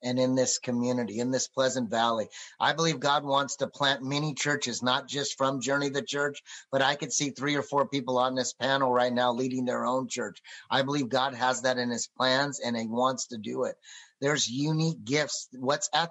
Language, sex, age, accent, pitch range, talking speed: English, male, 30-49, American, 130-160 Hz, 215 wpm